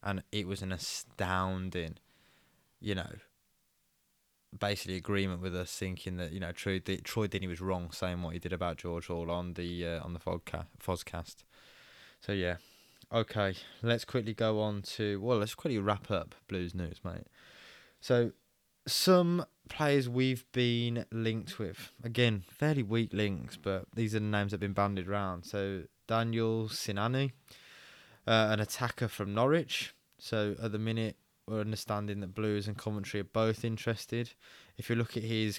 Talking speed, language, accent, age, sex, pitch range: 165 wpm, English, British, 20-39, male, 95-115 Hz